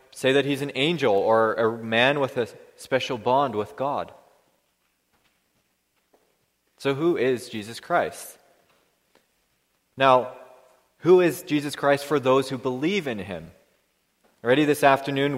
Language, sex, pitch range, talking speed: English, male, 115-150 Hz, 130 wpm